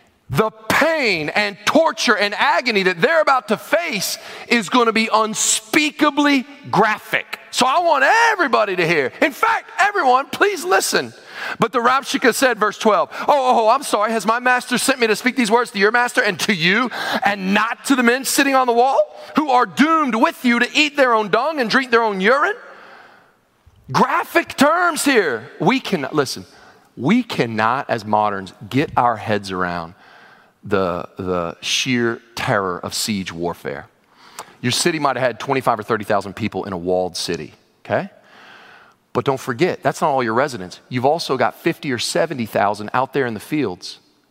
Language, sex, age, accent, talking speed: English, male, 40-59, American, 180 wpm